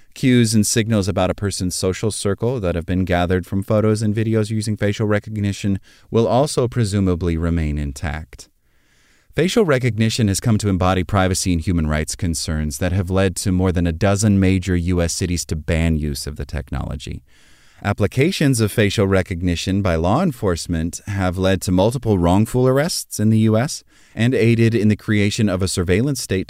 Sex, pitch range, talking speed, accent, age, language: male, 90-110 Hz, 175 wpm, American, 30-49, English